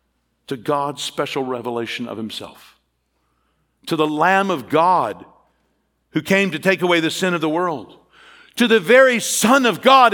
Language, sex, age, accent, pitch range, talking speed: English, male, 60-79, American, 135-205 Hz, 160 wpm